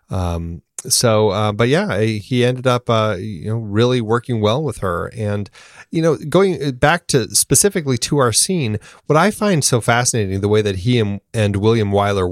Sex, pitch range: male, 100-130 Hz